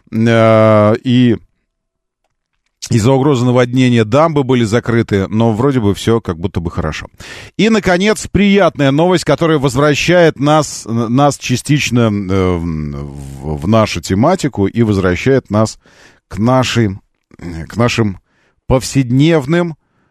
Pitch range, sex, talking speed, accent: 105-160 Hz, male, 105 wpm, native